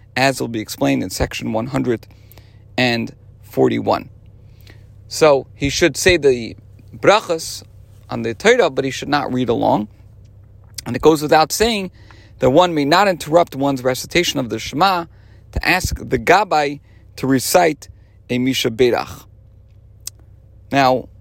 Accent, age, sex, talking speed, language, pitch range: American, 40-59, male, 130 wpm, English, 105-150 Hz